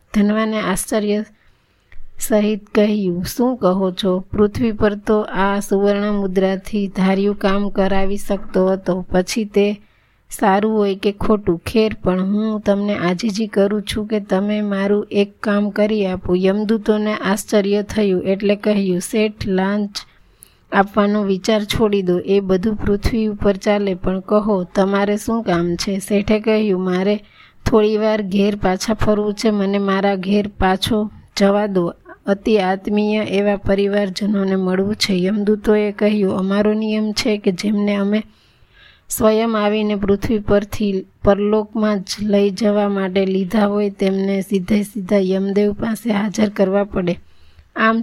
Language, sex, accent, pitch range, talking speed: Gujarati, female, native, 195-210 Hz, 80 wpm